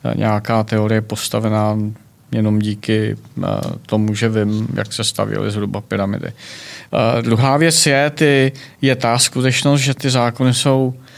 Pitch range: 110-125 Hz